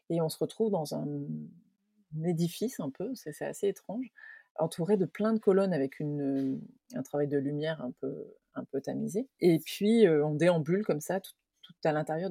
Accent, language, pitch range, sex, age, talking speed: French, French, 150-190 Hz, female, 30-49, 195 wpm